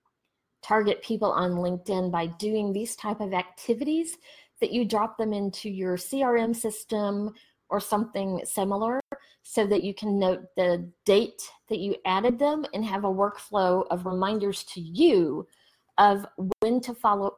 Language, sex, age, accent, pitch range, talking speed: English, female, 40-59, American, 180-220 Hz, 150 wpm